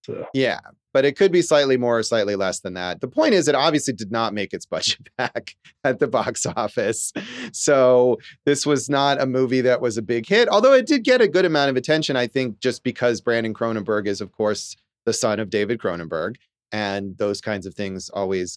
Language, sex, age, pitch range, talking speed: English, male, 30-49, 115-155 Hz, 215 wpm